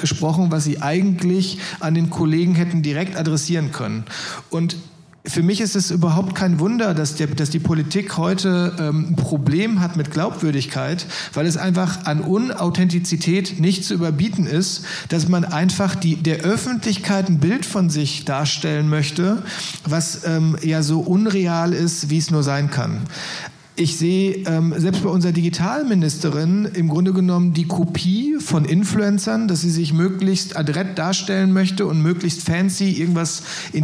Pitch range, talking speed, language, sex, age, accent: 155-185 Hz, 155 wpm, German, male, 50-69, German